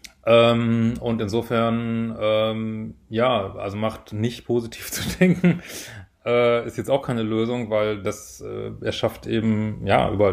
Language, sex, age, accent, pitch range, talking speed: German, male, 30-49, German, 110-120 Hz, 140 wpm